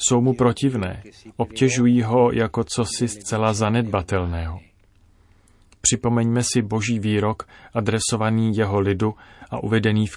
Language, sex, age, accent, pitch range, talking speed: Czech, male, 30-49, native, 95-110 Hz, 120 wpm